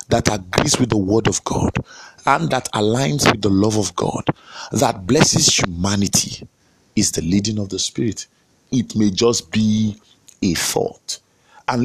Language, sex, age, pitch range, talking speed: English, male, 50-69, 105-140 Hz, 155 wpm